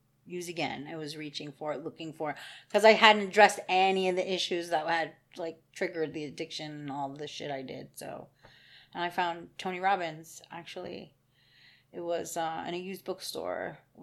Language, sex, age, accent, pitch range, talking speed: English, female, 30-49, American, 150-185 Hz, 190 wpm